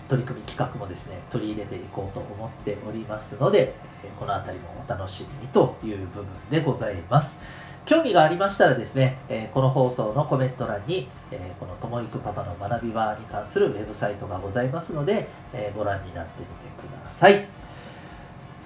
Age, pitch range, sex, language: 40-59, 110-155 Hz, male, Japanese